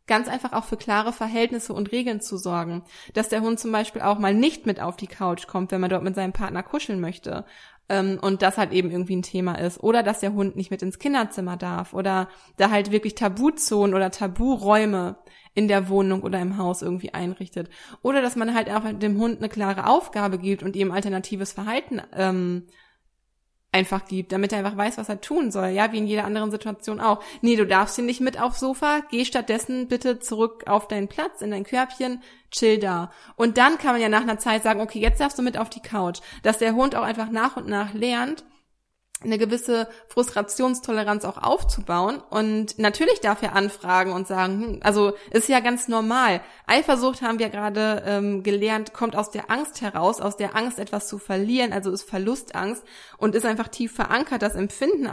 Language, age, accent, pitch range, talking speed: German, 20-39, German, 195-235 Hz, 200 wpm